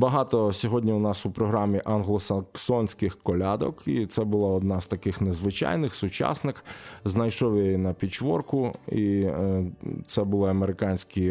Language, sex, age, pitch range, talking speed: Ukrainian, male, 20-39, 95-120 Hz, 125 wpm